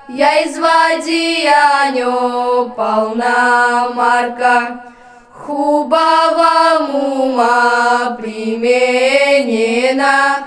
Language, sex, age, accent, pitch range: Ukrainian, female, 20-39, native, 245-290 Hz